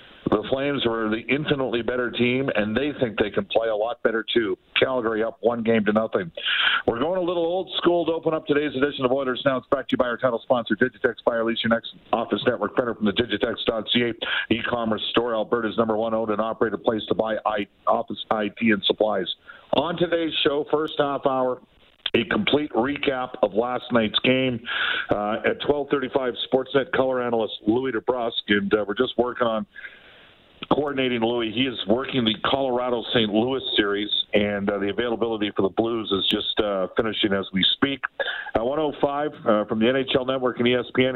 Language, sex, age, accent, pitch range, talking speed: English, male, 50-69, American, 110-130 Hz, 190 wpm